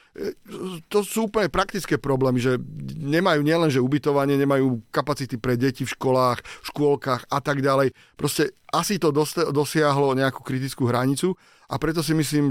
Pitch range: 130-150 Hz